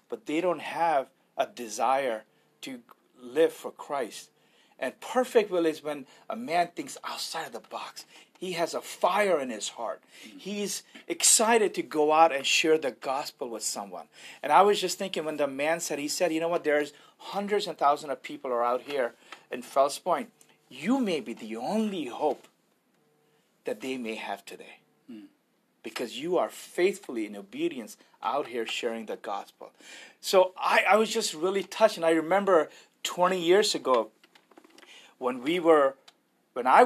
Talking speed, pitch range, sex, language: 175 wpm, 150-230 Hz, male, English